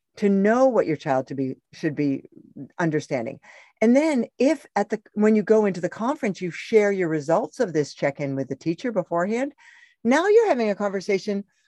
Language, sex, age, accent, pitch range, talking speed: English, female, 50-69, American, 170-260 Hz, 195 wpm